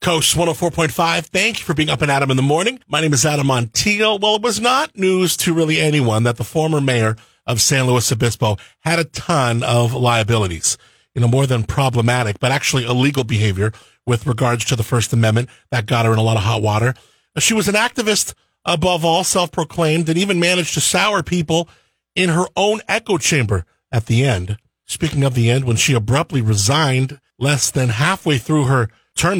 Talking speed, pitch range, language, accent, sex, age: 200 wpm, 120-165 Hz, English, American, male, 40-59